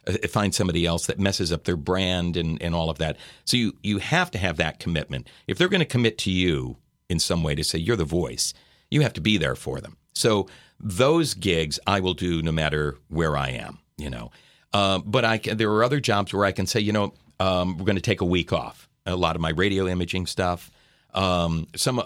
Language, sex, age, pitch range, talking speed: English, male, 50-69, 85-105 Hz, 235 wpm